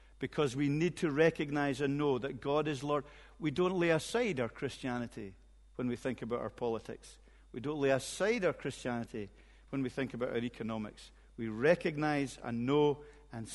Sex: male